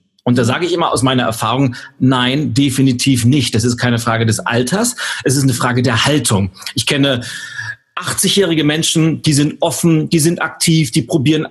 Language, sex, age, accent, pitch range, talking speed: German, male, 40-59, German, 130-170 Hz, 180 wpm